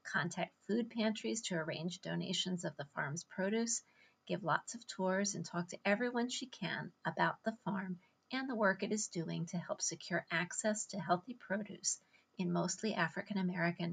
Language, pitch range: English, 175-215 Hz